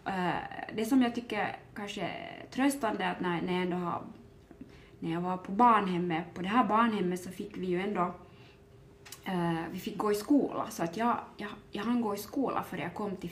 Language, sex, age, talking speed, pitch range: Finnish, female, 20-39, 200 wpm, 175-215 Hz